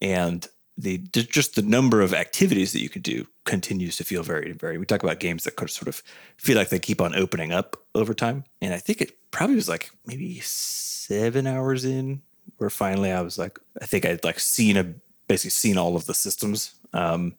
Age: 30-49